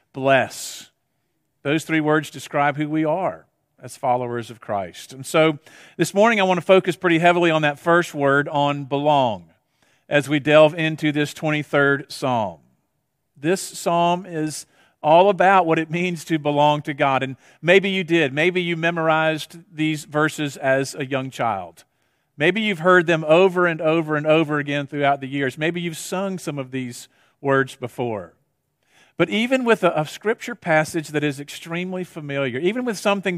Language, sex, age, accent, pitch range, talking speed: English, male, 50-69, American, 145-180 Hz, 170 wpm